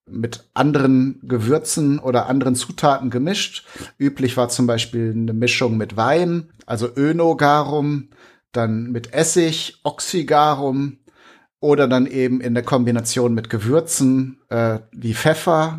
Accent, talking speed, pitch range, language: German, 120 wpm, 120-150 Hz, German